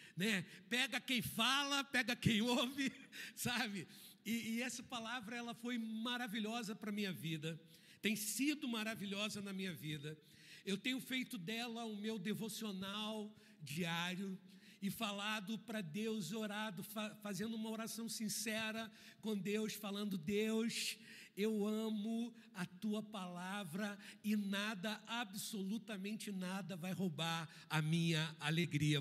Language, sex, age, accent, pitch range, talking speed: Portuguese, male, 60-79, Brazilian, 190-230 Hz, 125 wpm